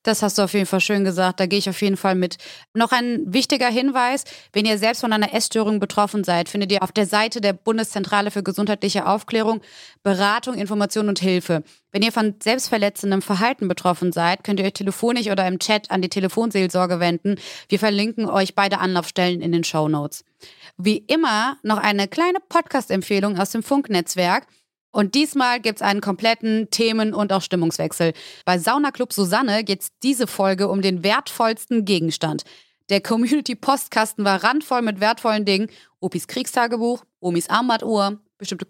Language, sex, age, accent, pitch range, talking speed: German, female, 30-49, German, 195-235 Hz, 165 wpm